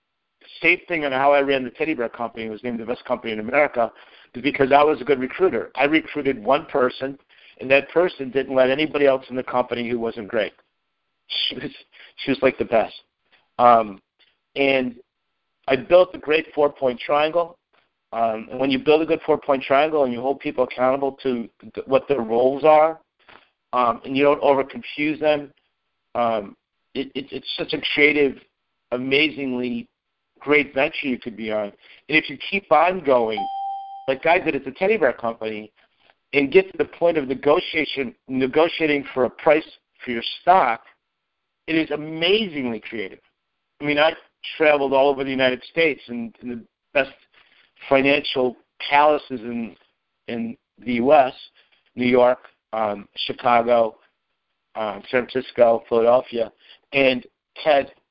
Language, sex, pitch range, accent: English, male, 120-150 Hz, American